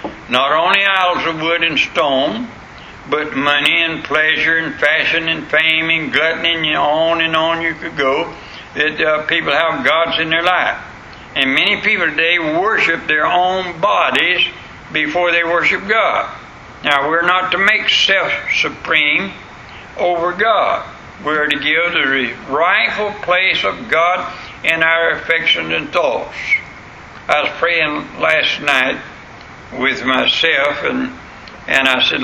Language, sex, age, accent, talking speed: English, male, 60-79, American, 140 wpm